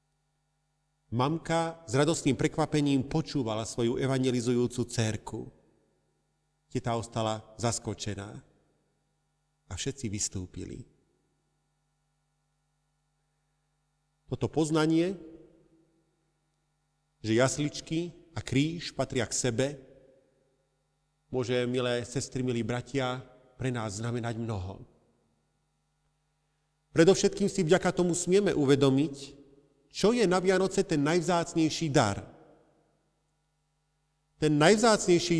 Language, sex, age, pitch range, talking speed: Slovak, male, 40-59, 130-160 Hz, 80 wpm